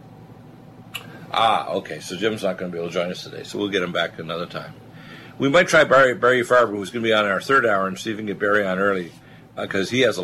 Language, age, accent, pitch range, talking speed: English, 50-69, American, 95-110 Hz, 280 wpm